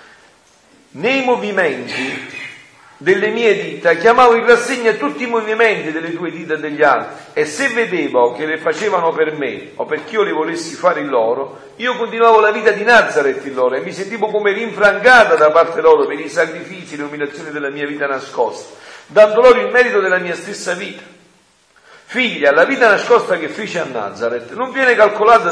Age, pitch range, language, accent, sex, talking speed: 50-69, 165-240 Hz, Italian, native, male, 180 wpm